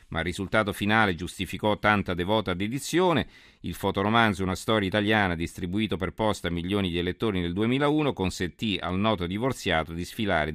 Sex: male